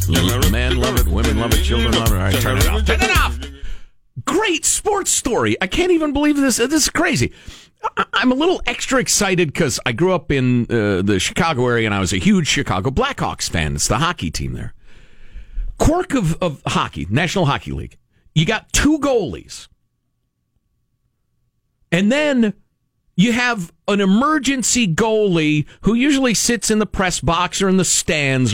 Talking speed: 175 wpm